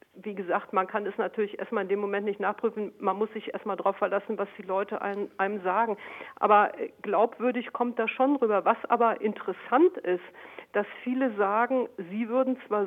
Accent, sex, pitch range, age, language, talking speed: German, female, 210-250 Hz, 50-69, German, 185 wpm